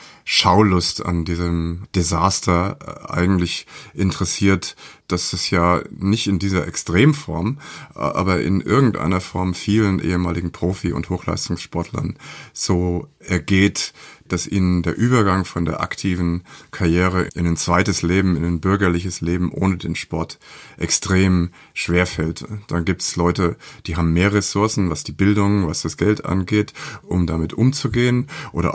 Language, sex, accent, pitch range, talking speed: German, male, German, 85-100 Hz, 135 wpm